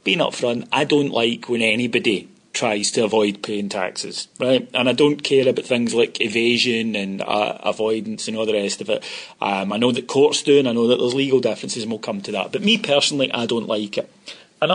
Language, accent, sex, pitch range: English, British, male, 120-155 Hz